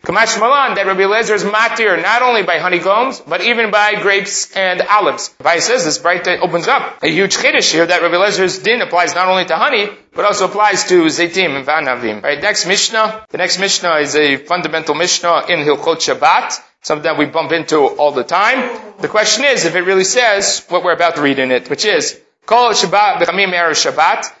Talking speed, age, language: 205 wpm, 30-49, English